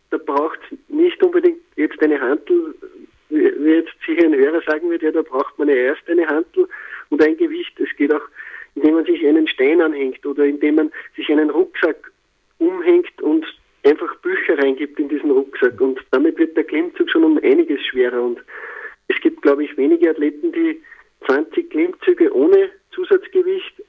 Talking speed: 175 wpm